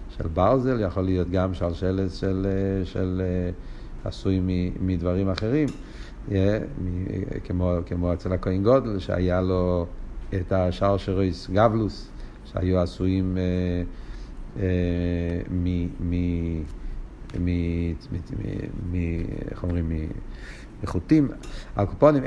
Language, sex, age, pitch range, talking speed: Hebrew, male, 50-69, 90-130 Hz, 65 wpm